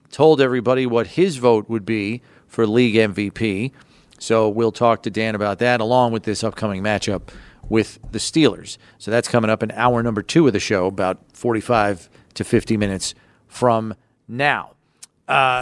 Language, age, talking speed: English, 40-59, 170 wpm